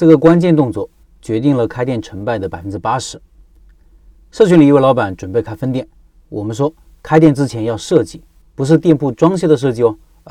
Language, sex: Chinese, male